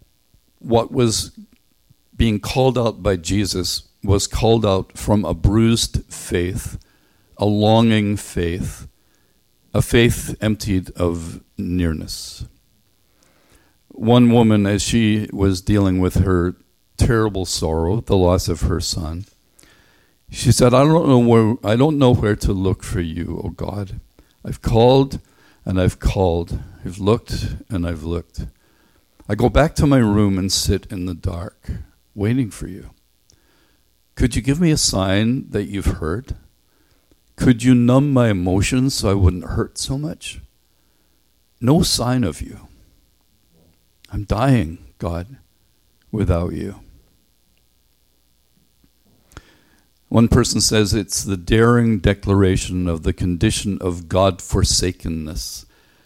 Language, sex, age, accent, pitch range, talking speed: English, male, 50-69, American, 90-115 Hz, 125 wpm